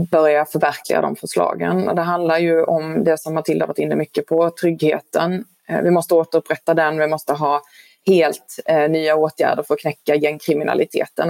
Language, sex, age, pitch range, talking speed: Swedish, female, 20-39, 160-190 Hz, 175 wpm